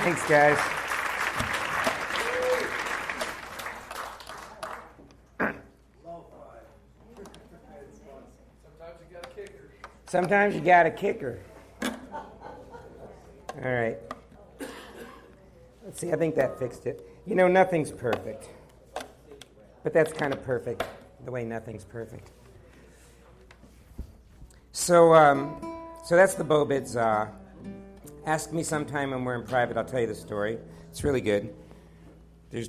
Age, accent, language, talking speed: 50-69, American, English, 95 wpm